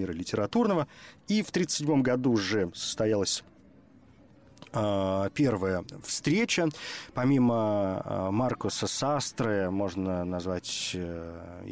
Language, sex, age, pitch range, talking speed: Russian, male, 30-49, 95-120 Hz, 75 wpm